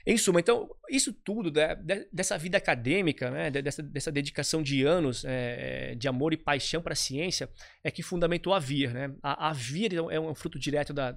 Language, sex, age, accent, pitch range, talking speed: Portuguese, male, 20-39, Brazilian, 135-165 Hz, 200 wpm